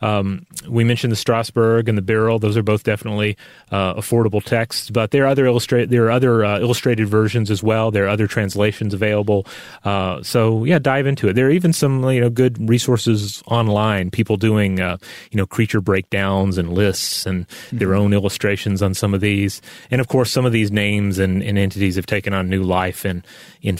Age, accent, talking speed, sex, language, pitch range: 30-49, American, 205 wpm, male, English, 100-125 Hz